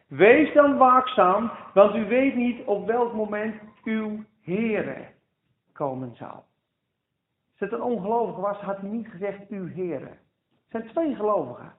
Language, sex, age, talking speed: Dutch, male, 50-69, 150 wpm